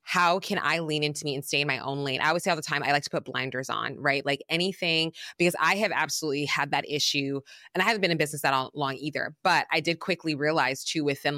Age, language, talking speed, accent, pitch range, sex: 20-39, English, 265 wpm, American, 145-175 Hz, female